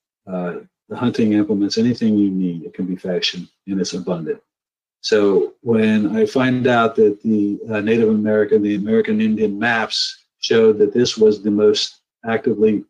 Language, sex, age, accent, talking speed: English, male, 50-69, American, 165 wpm